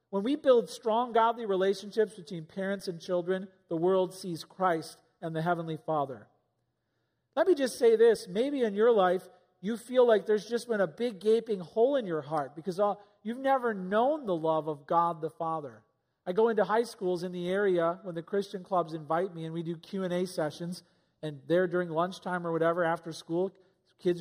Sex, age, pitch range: male, 40-59, 170-205 Hz